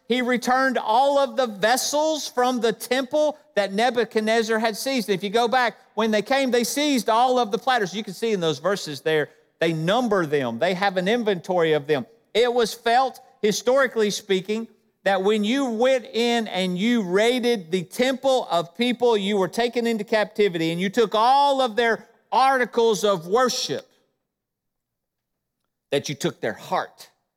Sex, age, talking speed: male, 50-69, 170 wpm